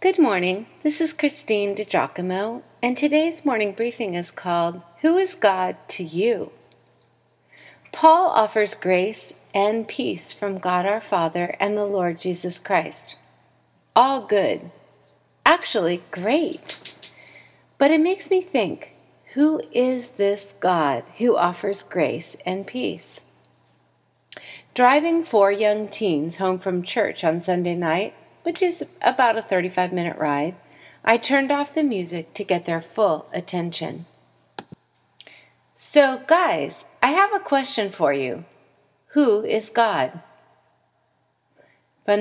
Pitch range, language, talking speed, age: 175-270 Hz, English, 125 wpm, 40-59